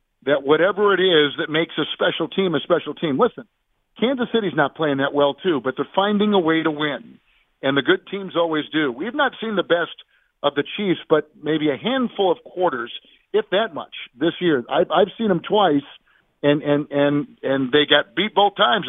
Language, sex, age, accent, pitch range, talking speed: English, male, 50-69, American, 145-190 Hz, 210 wpm